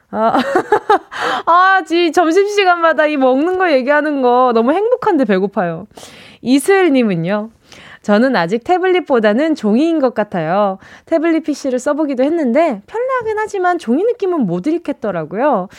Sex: female